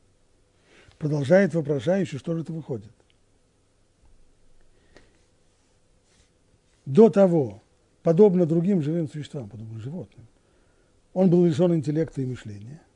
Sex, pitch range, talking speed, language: male, 110-180 Hz, 95 wpm, Russian